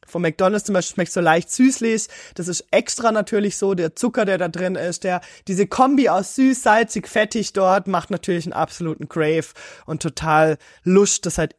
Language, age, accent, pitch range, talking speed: German, 20-39, German, 160-210 Hz, 190 wpm